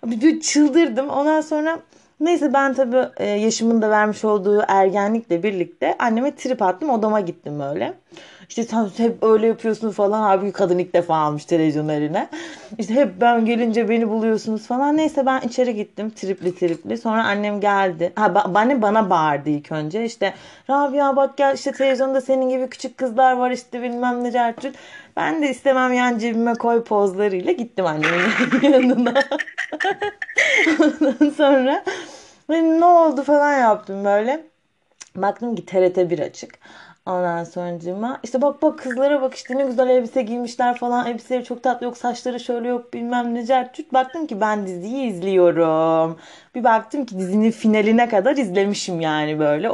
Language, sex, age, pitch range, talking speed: Turkish, female, 30-49, 200-270 Hz, 155 wpm